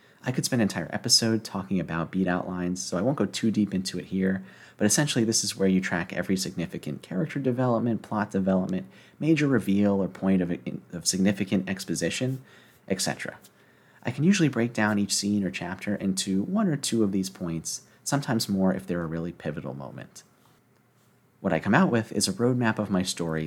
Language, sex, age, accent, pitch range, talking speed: English, male, 30-49, American, 85-115 Hz, 190 wpm